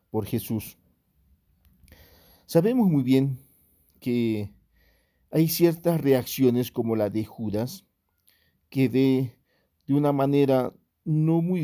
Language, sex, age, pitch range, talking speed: English, male, 50-69, 110-140 Hz, 105 wpm